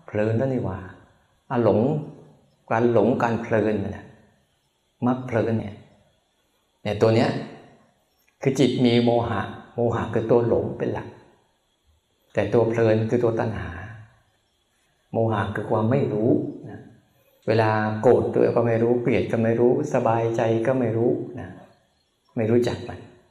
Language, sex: Thai, male